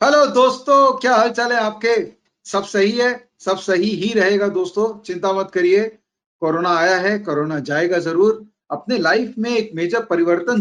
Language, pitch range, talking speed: Tamil, 170-220 Hz, 170 wpm